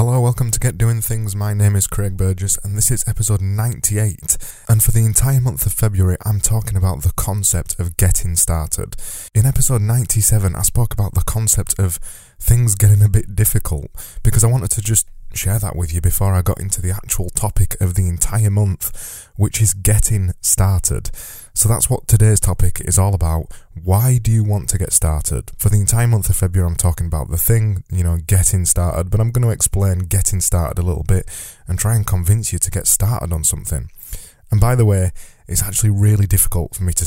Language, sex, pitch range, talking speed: English, male, 90-110 Hz, 210 wpm